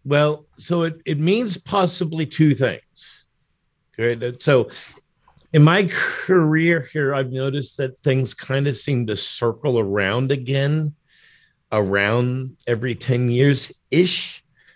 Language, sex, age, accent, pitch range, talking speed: English, male, 50-69, American, 110-155 Hz, 120 wpm